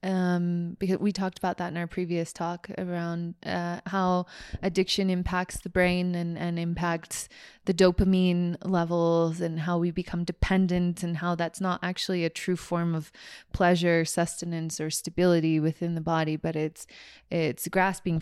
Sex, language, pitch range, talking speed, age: female, English, 170-200 Hz, 160 wpm, 20-39